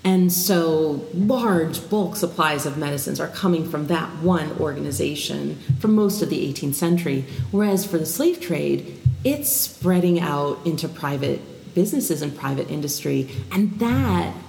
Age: 40-59